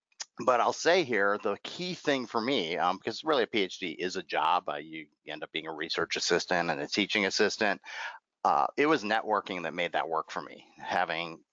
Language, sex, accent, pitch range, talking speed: English, male, American, 95-125 Hz, 210 wpm